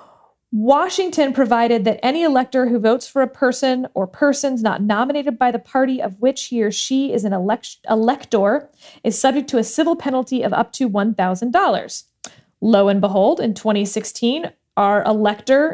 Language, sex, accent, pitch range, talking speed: English, female, American, 215-270 Hz, 160 wpm